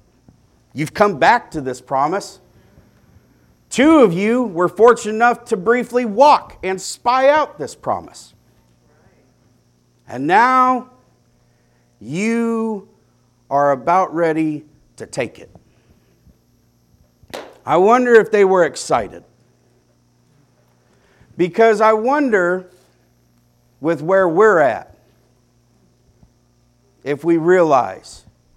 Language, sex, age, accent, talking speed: English, male, 50-69, American, 95 wpm